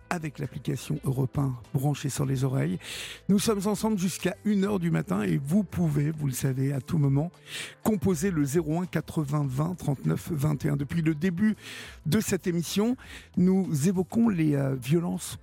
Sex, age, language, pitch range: male, 50-69, French, 140-180 Hz